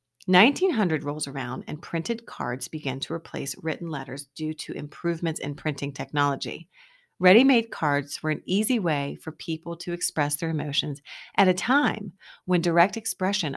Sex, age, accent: female, 30-49, American